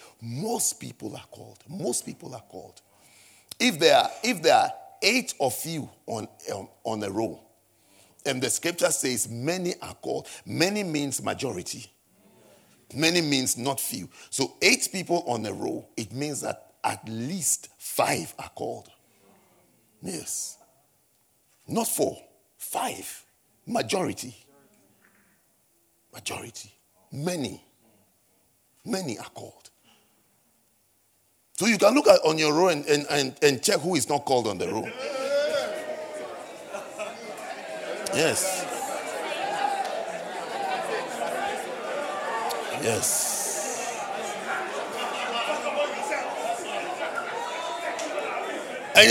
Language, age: English, 50-69